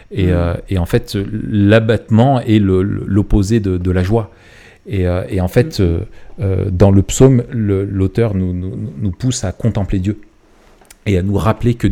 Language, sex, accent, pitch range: French, male, French, 95-115 Hz